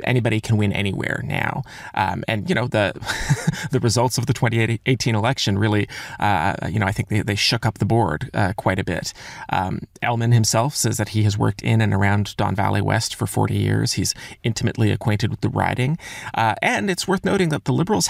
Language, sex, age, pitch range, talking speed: English, male, 30-49, 105-130 Hz, 210 wpm